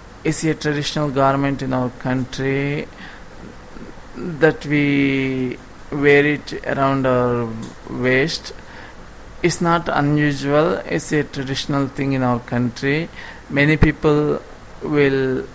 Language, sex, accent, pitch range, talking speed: English, male, Indian, 120-165 Hz, 105 wpm